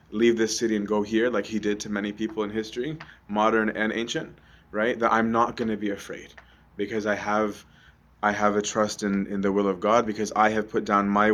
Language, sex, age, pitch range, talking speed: English, male, 20-39, 100-110 Hz, 235 wpm